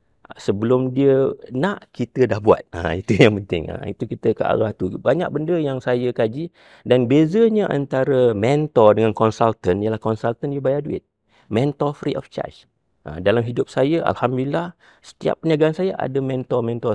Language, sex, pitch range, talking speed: Malay, male, 105-140 Hz, 165 wpm